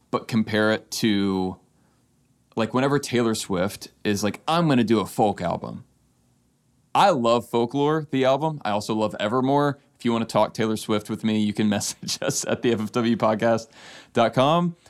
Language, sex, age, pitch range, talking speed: English, male, 20-39, 105-135 Hz, 165 wpm